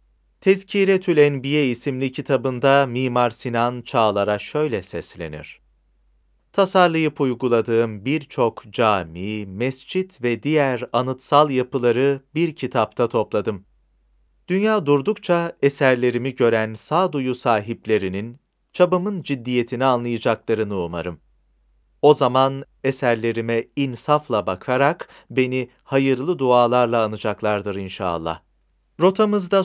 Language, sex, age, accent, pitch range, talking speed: Turkish, male, 40-59, native, 115-150 Hz, 85 wpm